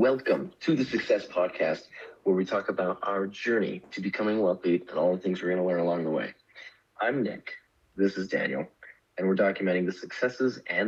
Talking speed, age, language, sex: 200 wpm, 40-59, English, male